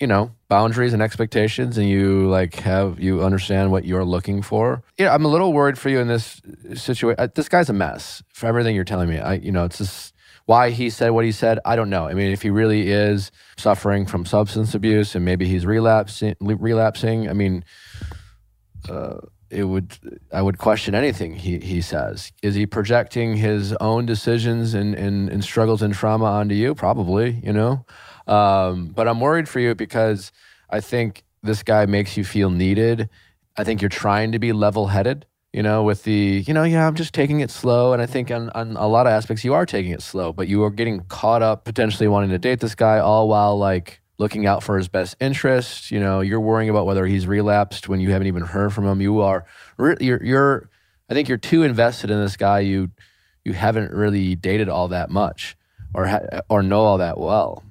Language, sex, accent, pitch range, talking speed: English, male, American, 95-115 Hz, 210 wpm